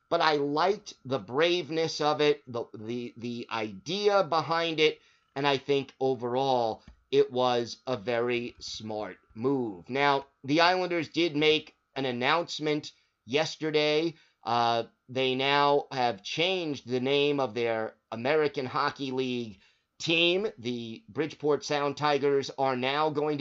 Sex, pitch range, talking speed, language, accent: male, 120-150 Hz, 130 wpm, English, American